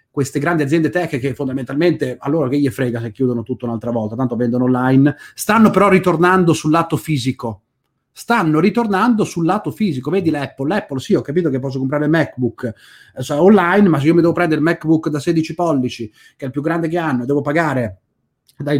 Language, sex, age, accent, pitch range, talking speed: Italian, male, 30-49, native, 125-155 Hz, 210 wpm